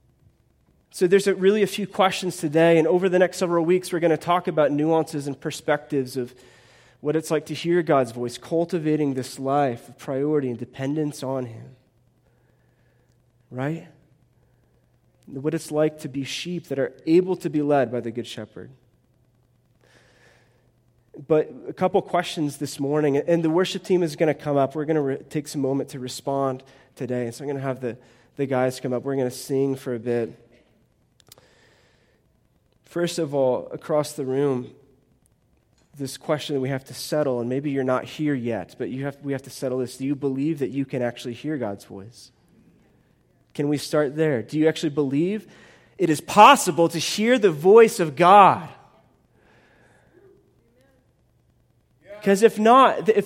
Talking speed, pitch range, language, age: 170 wpm, 130-175 Hz, English, 20-39